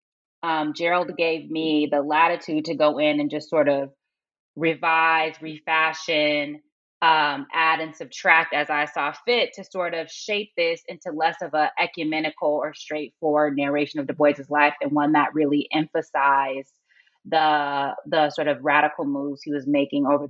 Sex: female